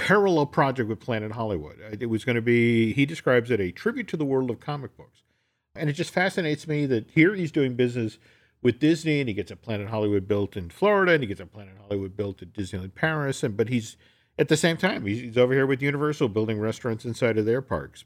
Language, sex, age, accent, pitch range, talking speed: English, male, 50-69, American, 110-145 Hz, 235 wpm